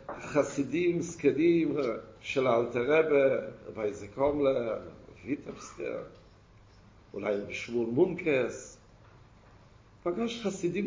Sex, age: male, 50-69